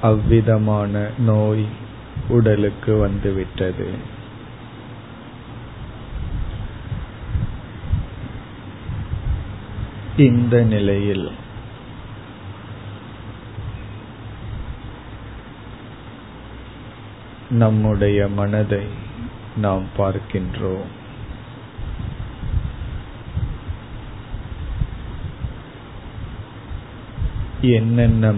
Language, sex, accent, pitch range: Tamil, male, native, 100-115 Hz